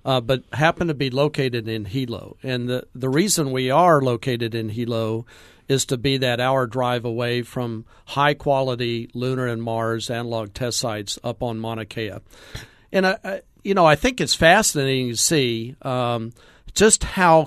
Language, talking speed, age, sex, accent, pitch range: English, 170 wpm, 50-69, male, American, 115-145 Hz